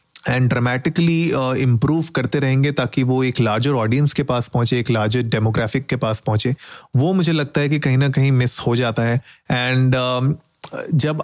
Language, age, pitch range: Hindi, 30-49, 125-150 Hz